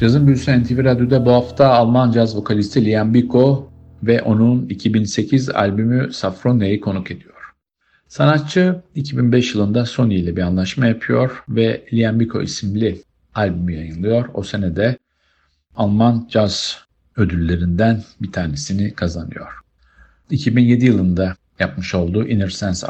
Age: 50-69